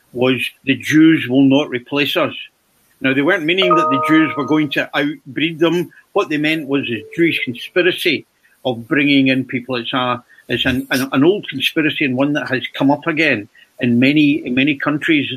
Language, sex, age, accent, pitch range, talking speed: English, male, 50-69, British, 125-150 Hz, 195 wpm